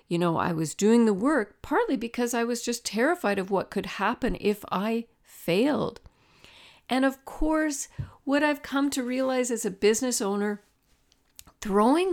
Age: 50-69